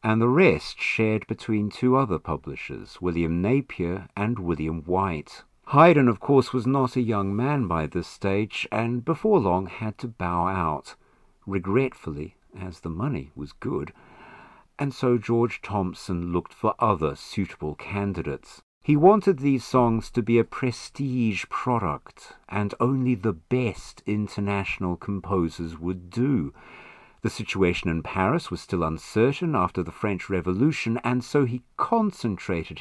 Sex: male